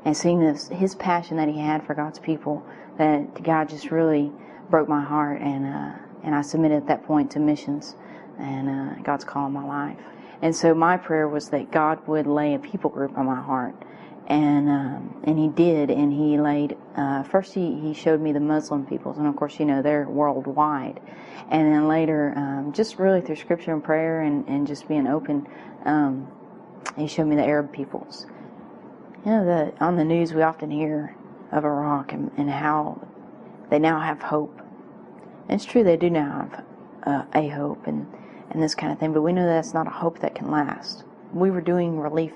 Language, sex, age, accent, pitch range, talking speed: English, female, 30-49, American, 145-160 Hz, 205 wpm